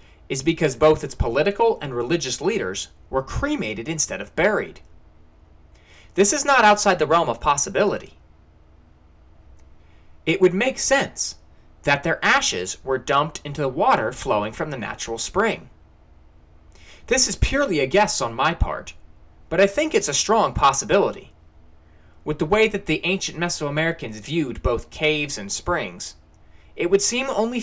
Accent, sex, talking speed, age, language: American, male, 150 wpm, 30-49, English